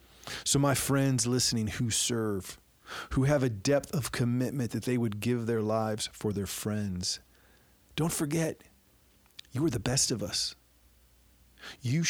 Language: English